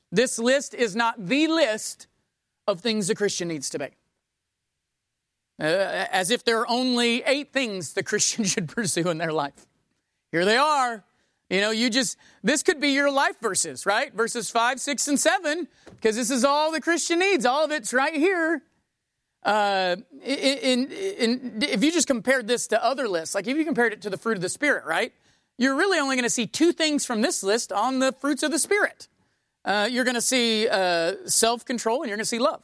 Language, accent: English, American